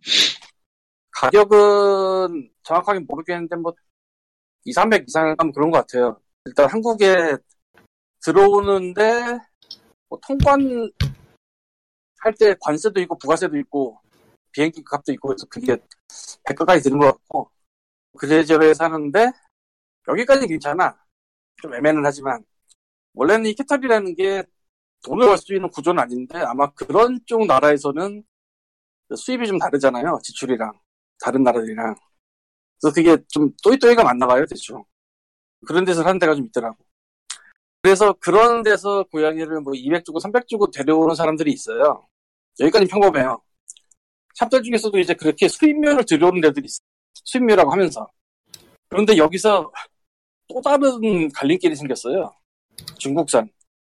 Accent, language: native, Korean